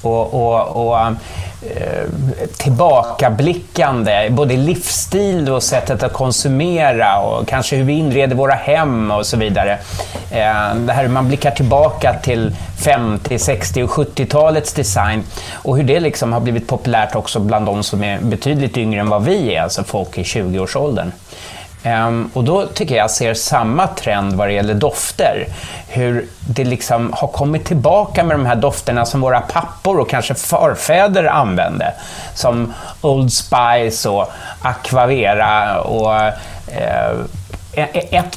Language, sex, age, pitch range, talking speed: English, male, 30-49, 105-140 Hz, 135 wpm